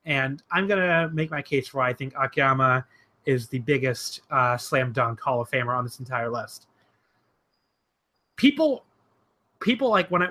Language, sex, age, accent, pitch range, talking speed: English, male, 30-49, American, 135-205 Hz, 175 wpm